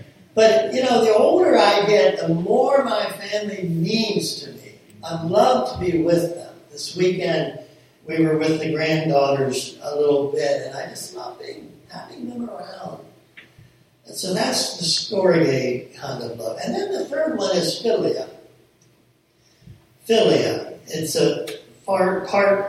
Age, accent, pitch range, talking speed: 60-79, American, 145-205 Hz, 155 wpm